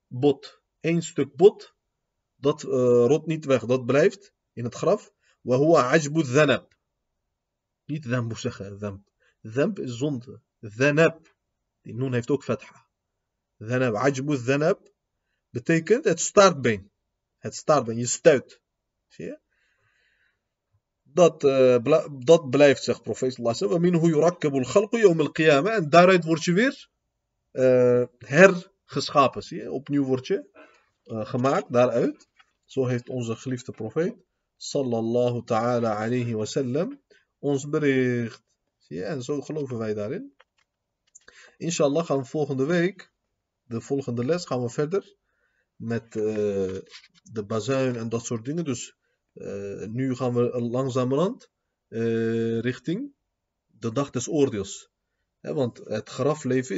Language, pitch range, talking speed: Dutch, 115-155 Hz, 125 wpm